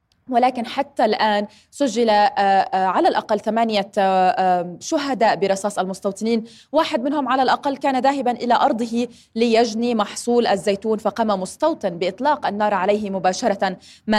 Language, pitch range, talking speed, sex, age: Arabic, 195-250 Hz, 120 wpm, female, 20-39